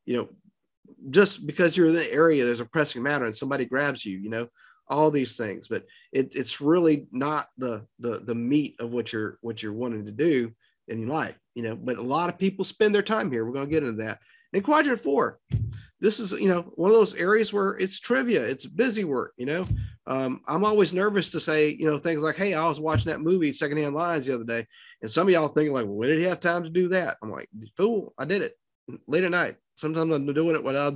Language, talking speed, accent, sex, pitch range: English, 245 wpm, American, male, 120-175 Hz